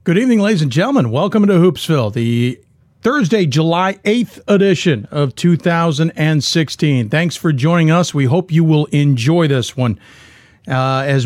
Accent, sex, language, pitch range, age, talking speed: American, male, English, 140-195 Hz, 50-69, 150 wpm